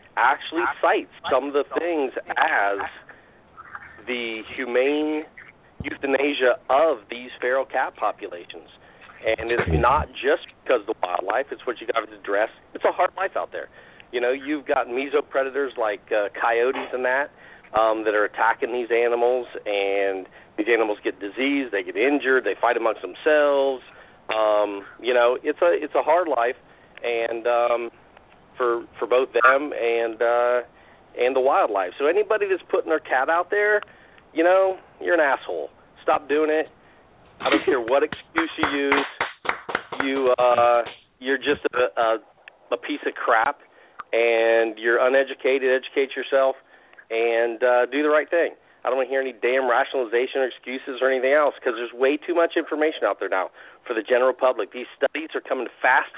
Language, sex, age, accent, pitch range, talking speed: English, male, 40-59, American, 120-150 Hz, 170 wpm